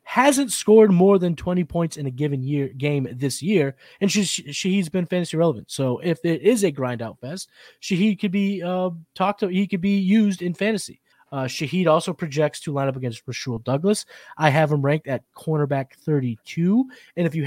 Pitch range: 135-185 Hz